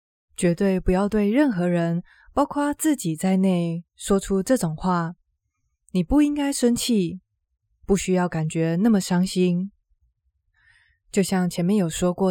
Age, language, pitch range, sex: 20-39, Chinese, 170-230 Hz, female